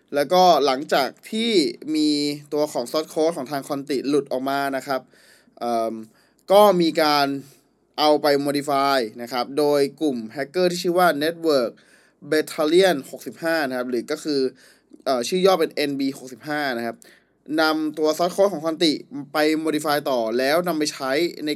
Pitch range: 135-175 Hz